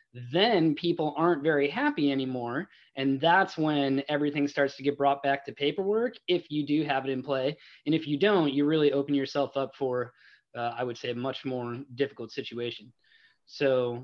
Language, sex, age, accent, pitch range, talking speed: English, male, 20-39, American, 125-145 Hz, 190 wpm